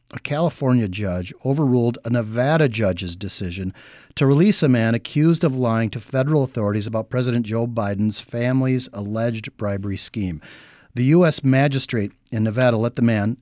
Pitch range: 110-135 Hz